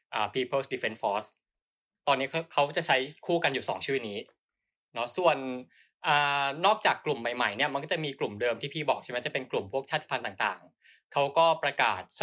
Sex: male